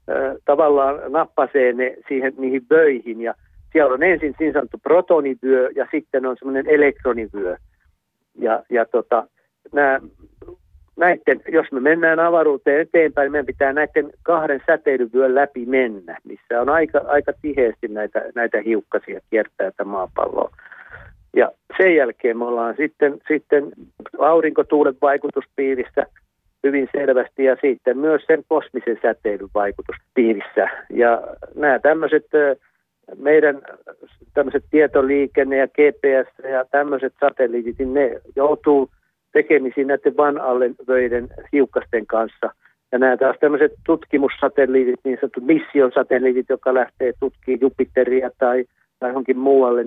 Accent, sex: native, male